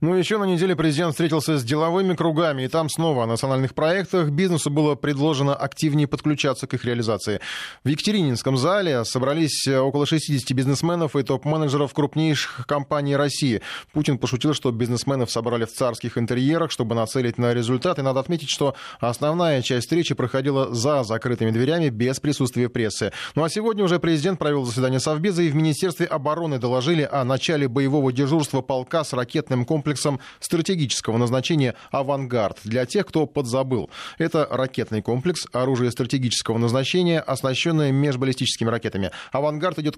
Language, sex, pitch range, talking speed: Russian, male, 125-155 Hz, 150 wpm